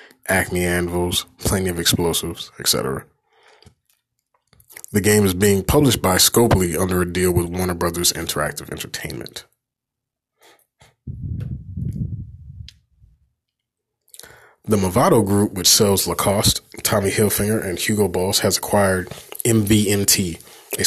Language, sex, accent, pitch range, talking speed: English, male, American, 90-105 Hz, 105 wpm